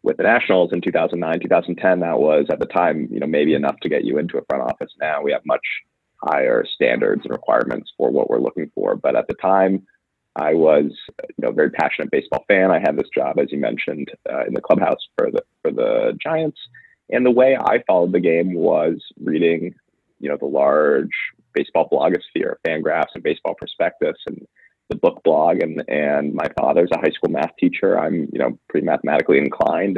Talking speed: 205 wpm